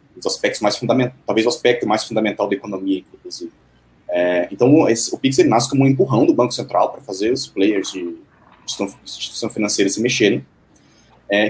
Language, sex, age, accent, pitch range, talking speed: Portuguese, male, 20-39, Brazilian, 100-130 Hz, 175 wpm